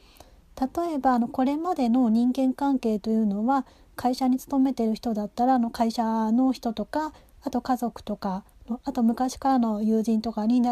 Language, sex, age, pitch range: Japanese, female, 30-49, 225-270 Hz